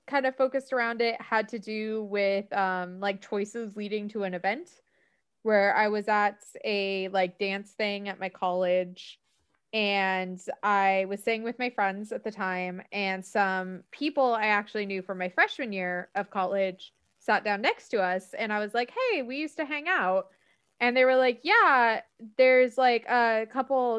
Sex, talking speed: female, 185 wpm